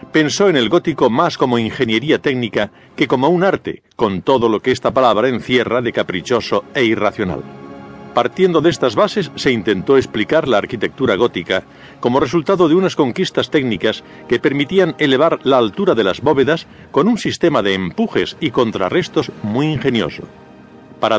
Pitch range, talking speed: 110-155 Hz, 160 wpm